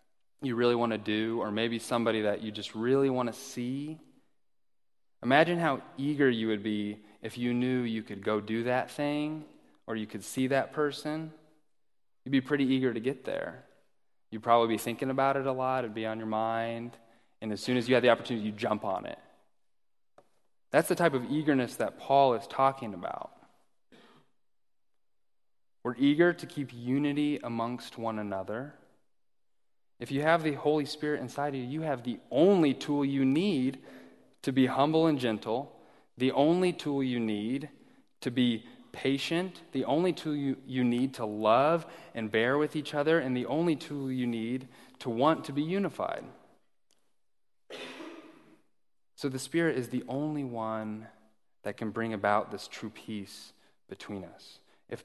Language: English